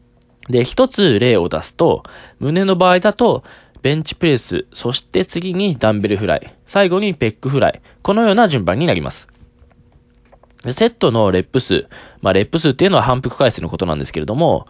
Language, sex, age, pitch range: Japanese, male, 20-39, 115-185 Hz